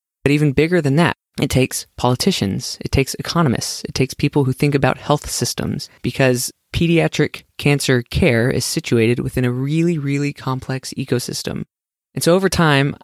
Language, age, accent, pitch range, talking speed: English, 20-39, American, 125-150 Hz, 160 wpm